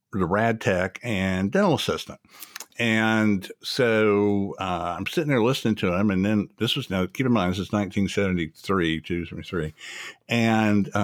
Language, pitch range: English, 90-120 Hz